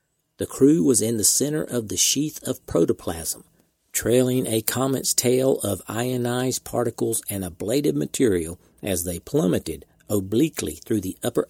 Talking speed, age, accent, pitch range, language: 145 wpm, 50-69, American, 100-125 Hz, English